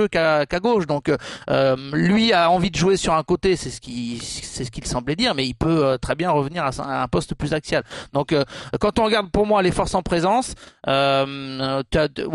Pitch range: 130-175 Hz